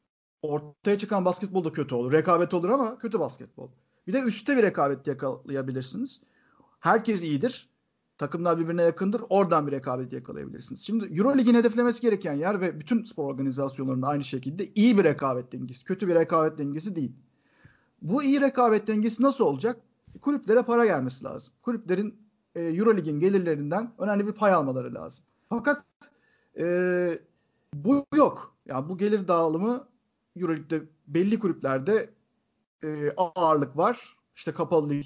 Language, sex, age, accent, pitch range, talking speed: Turkish, male, 50-69, native, 150-225 Hz, 135 wpm